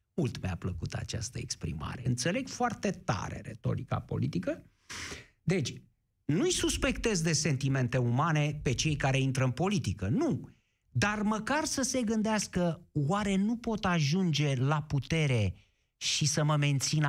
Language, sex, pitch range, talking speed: Romanian, male, 130-195 Hz, 135 wpm